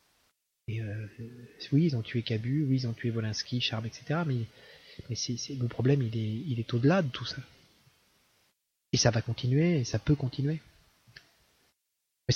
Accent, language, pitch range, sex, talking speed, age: French, French, 110-140 Hz, male, 185 wpm, 30-49